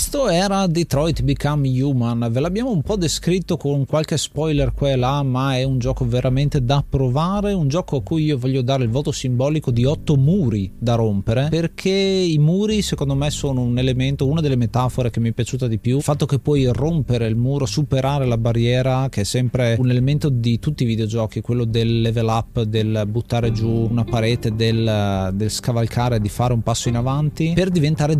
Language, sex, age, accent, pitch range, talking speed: Italian, male, 30-49, native, 115-145 Hz, 200 wpm